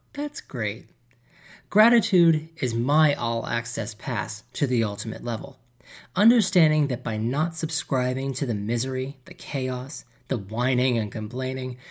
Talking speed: 125 wpm